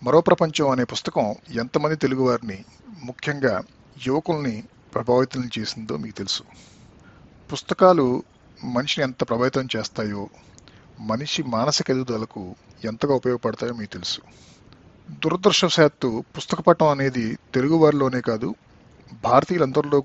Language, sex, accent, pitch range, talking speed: Telugu, male, native, 115-145 Hz, 95 wpm